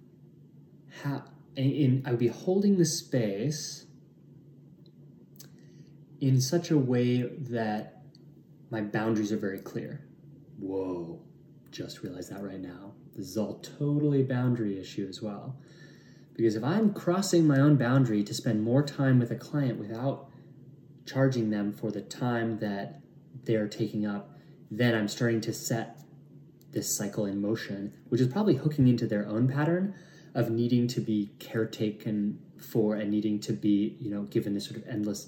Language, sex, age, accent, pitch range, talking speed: English, male, 20-39, American, 110-150 Hz, 155 wpm